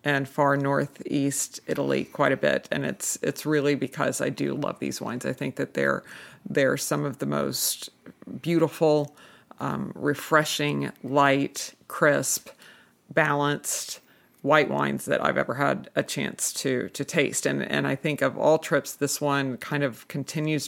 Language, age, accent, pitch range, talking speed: English, 50-69, American, 130-150 Hz, 160 wpm